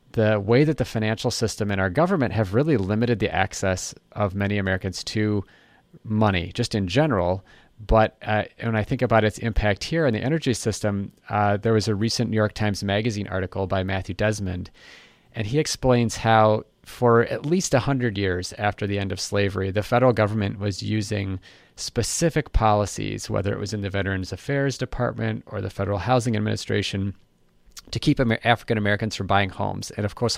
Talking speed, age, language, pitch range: 180 wpm, 30-49, English, 100-120 Hz